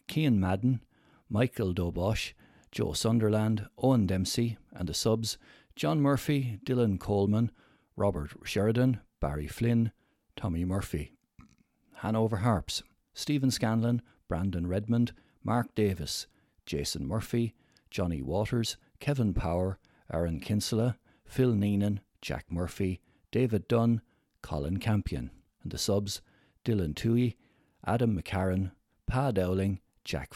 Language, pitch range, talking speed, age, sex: English, 95-120 Hz, 110 wpm, 60-79, male